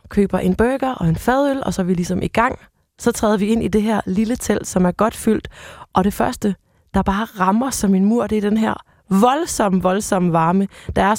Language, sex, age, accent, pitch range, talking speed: Danish, female, 20-39, native, 170-210 Hz, 235 wpm